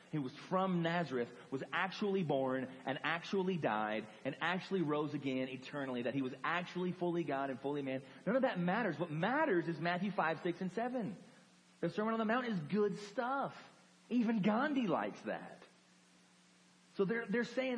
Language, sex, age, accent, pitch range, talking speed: English, male, 30-49, American, 135-205 Hz, 175 wpm